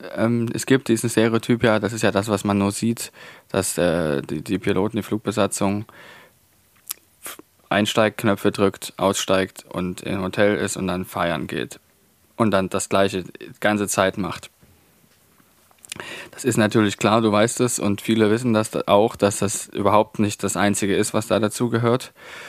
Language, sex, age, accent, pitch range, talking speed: German, male, 20-39, German, 95-110 Hz, 165 wpm